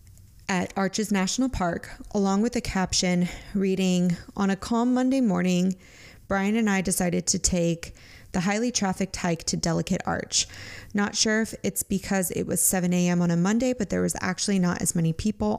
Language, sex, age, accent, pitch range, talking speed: English, female, 20-39, American, 170-210 Hz, 180 wpm